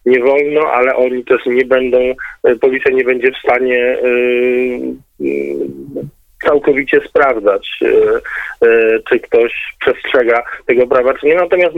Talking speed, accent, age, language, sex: 110 wpm, native, 40-59, Polish, male